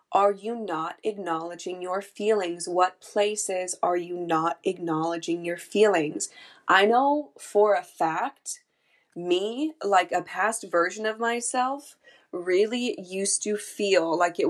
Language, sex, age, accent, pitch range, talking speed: English, female, 20-39, American, 160-185 Hz, 135 wpm